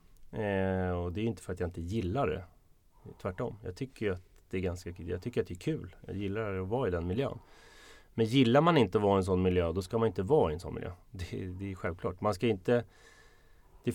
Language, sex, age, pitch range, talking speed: Swedish, male, 30-49, 90-110 Hz, 230 wpm